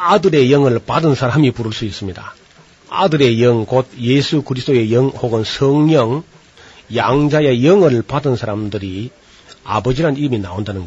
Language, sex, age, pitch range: Korean, male, 40-59, 115-150 Hz